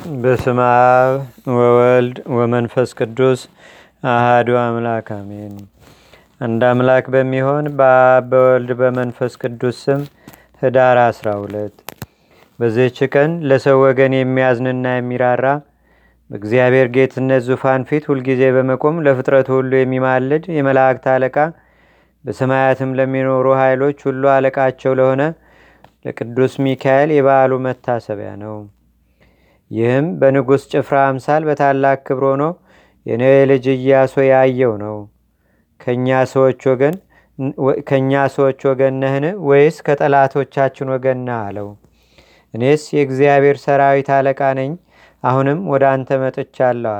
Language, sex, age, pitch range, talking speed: Amharic, male, 30-49, 125-140 Hz, 90 wpm